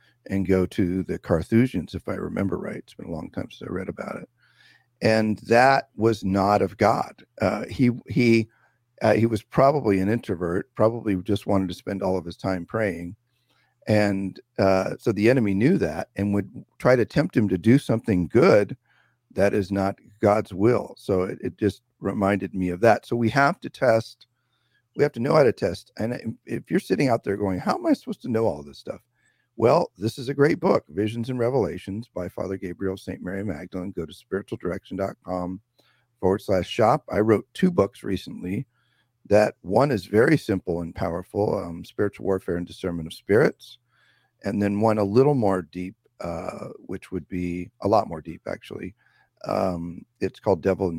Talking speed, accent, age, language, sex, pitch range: 190 wpm, American, 50-69, English, male, 95-115 Hz